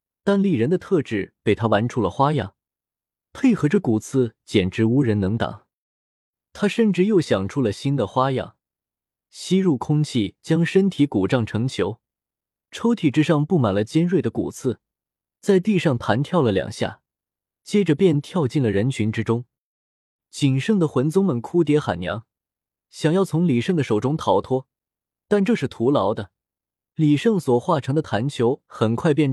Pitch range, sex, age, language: 110-165 Hz, male, 20-39, Chinese